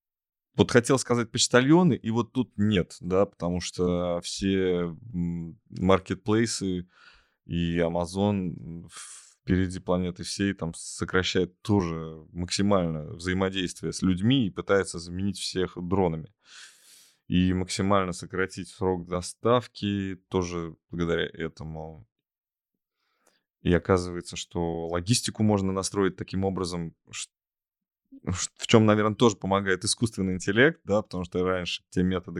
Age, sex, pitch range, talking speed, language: 20-39, male, 85-105 Hz, 110 wpm, Russian